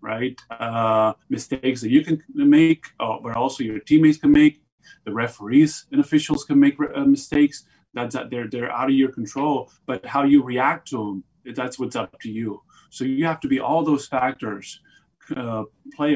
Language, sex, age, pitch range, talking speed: English, male, 30-49, 120-165 Hz, 190 wpm